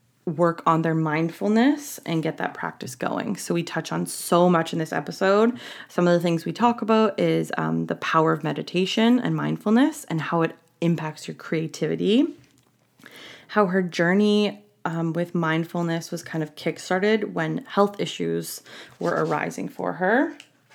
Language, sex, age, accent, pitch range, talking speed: English, female, 20-39, American, 160-205 Hz, 160 wpm